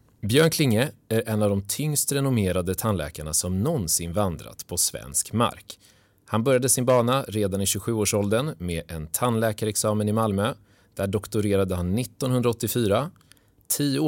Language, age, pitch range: Swedish, 30-49, 90-120 Hz